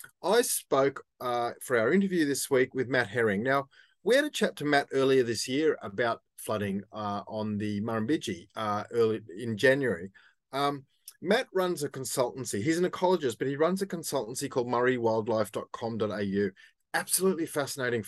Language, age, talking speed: English, 30-49, 155 wpm